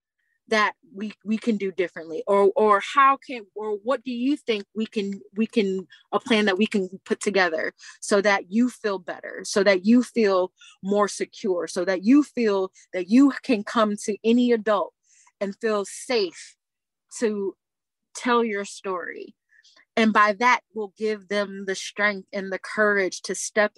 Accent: American